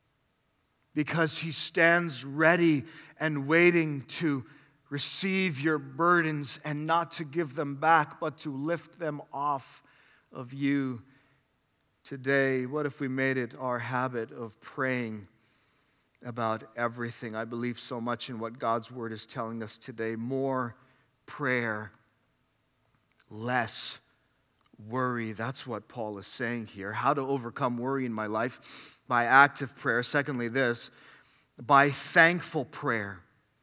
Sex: male